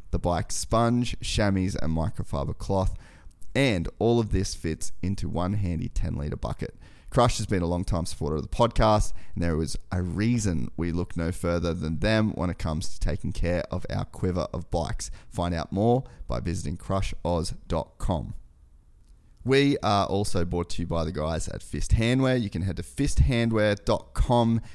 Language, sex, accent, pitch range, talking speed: English, male, Australian, 80-100 Hz, 170 wpm